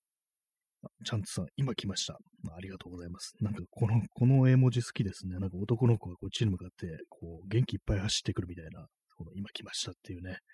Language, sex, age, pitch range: Japanese, male, 30-49, 95-120 Hz